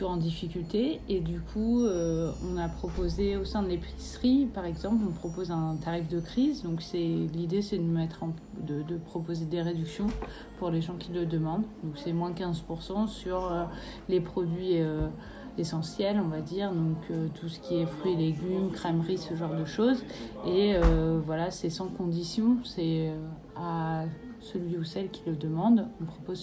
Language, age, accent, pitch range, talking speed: French, 30-49, French, 165-195 Hz, 185 wpm